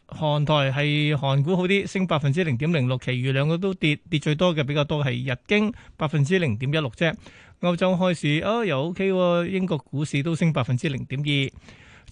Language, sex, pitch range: Chinese, male, 140-180 Hz